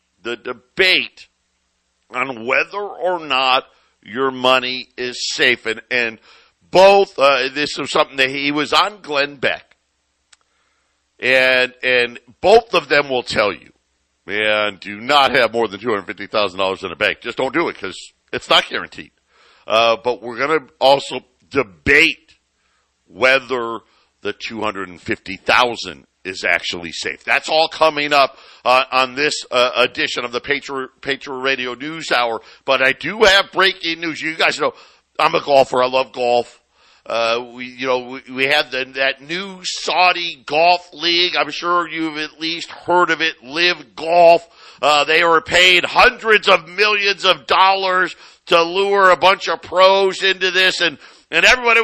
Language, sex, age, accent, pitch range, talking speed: English, male, 60-79, American, 125-175 Hz, 155 wpm